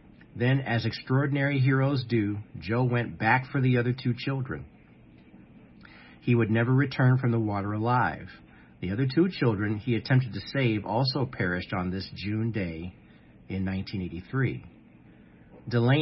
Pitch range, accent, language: 105-135 Hz, American, English